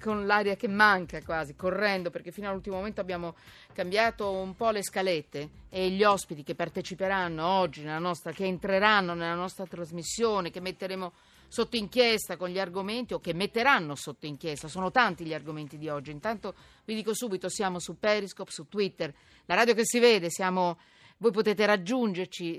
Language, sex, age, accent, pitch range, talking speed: Italian, female, 40-59, native, 170-220 Hz, 175 wpm